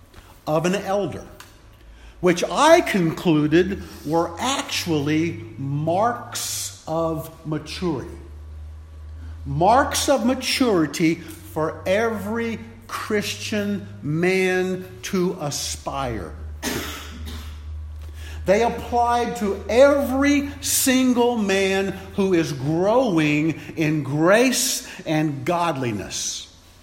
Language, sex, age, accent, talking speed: English, male, 50-69, American, 75 wpm